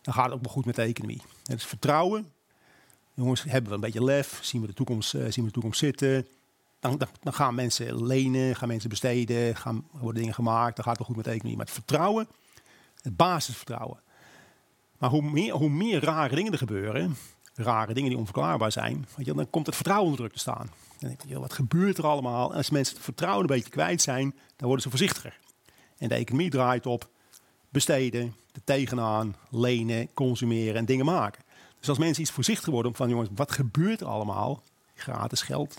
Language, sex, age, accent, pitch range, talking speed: Dutch, male, 40-59, Dutch, 115-145 Hz, 205 wpm